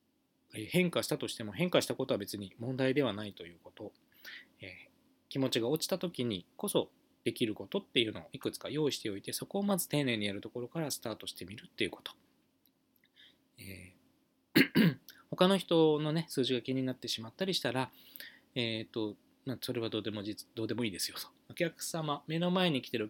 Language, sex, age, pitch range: Japanese, male, 20-39, 120-185 Hz